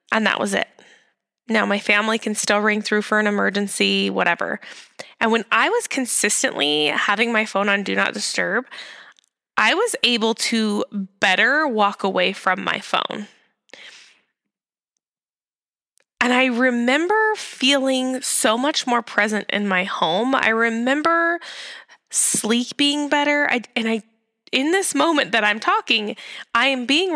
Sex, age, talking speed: female, 20-39, 140 wpm